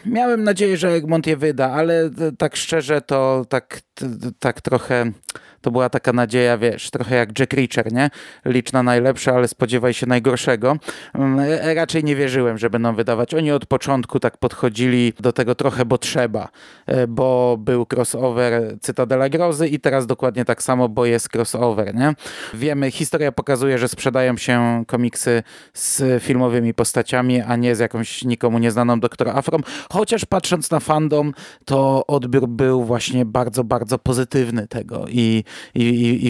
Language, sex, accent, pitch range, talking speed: Polish, male, native, 120-145 Hz, 155 wpm